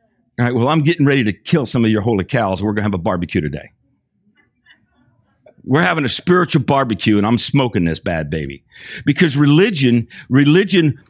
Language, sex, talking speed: English, male, 180 wpm